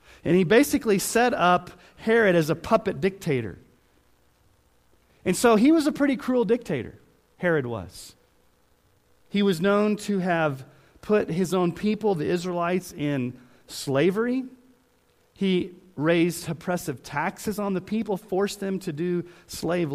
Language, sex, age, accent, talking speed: English, male, 40-59, American, 135 wpm